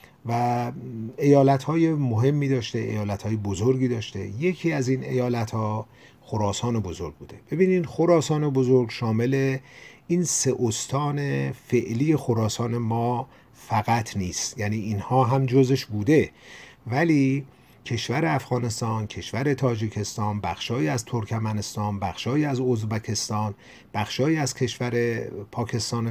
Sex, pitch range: male, 110-135 Hz